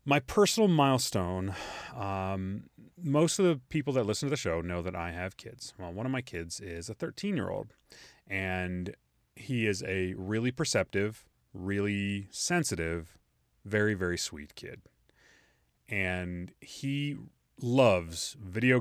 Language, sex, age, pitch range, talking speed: English, male, 30-49, 90-120 Hz, 135 wpm